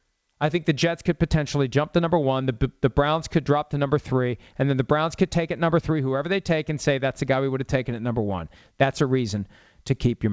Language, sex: English, male